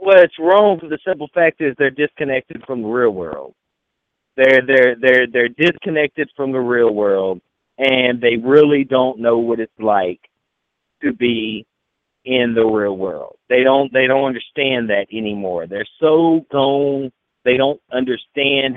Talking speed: 160 wpm